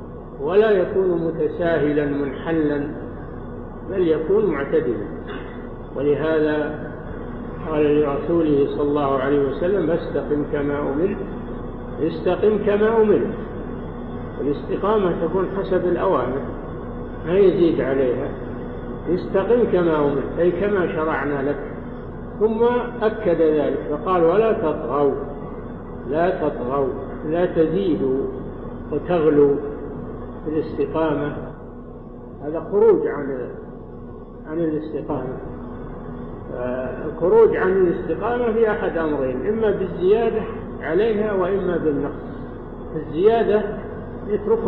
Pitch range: 145-210 Hz